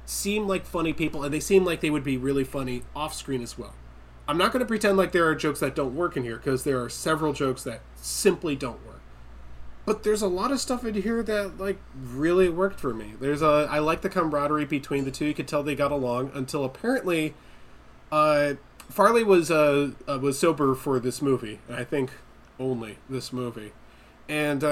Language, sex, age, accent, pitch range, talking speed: English, male, 20-39, American, 130-175 Hz, 210 wpm